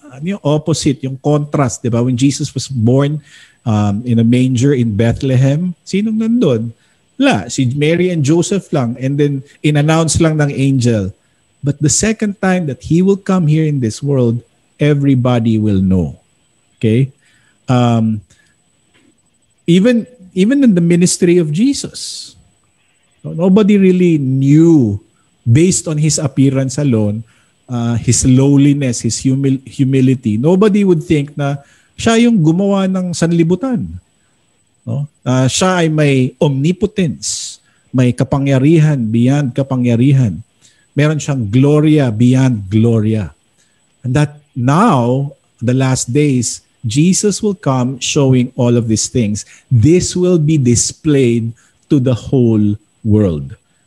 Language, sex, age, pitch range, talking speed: Filipino, male, 50-69, 120-165 Hz, 125 wpm